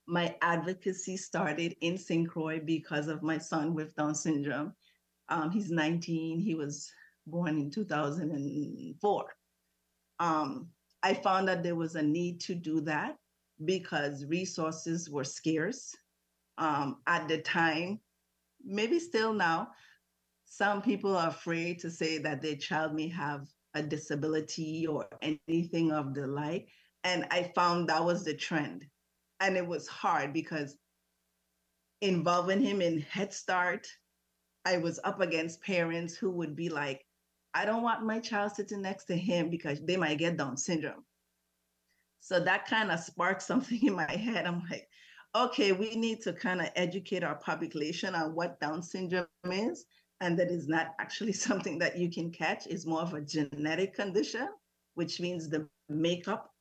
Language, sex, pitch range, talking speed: English, female, 150-180 Hz, 155 wpm